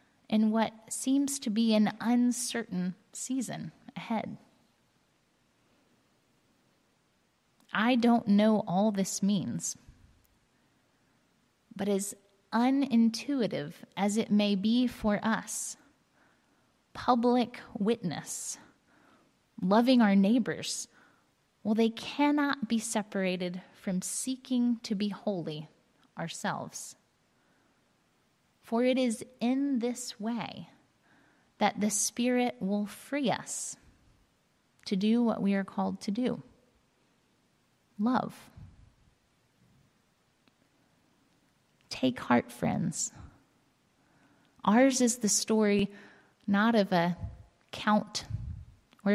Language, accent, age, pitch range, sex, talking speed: English, American, 20-39, 200-240 Hz, female, 90 wpm